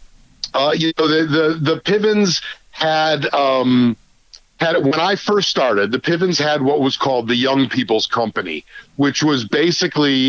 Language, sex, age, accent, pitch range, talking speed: English, male, 50-69, American, 125-155 Hz, 155 wpm